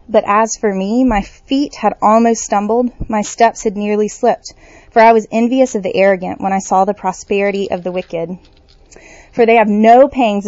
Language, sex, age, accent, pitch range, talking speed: English, female, 20-39, American, 195-235 Hz, 195 wpm